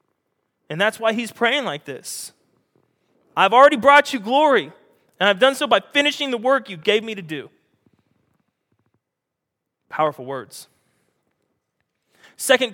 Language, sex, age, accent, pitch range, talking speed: English, male, 20-39, American, 170-230 Hz, 130 wpm